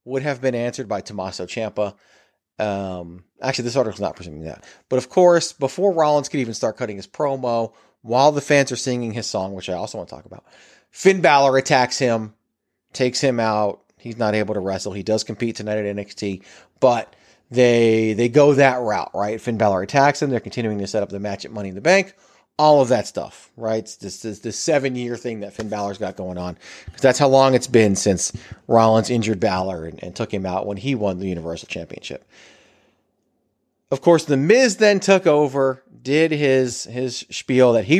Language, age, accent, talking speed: English, 30-49, American, 205 wpm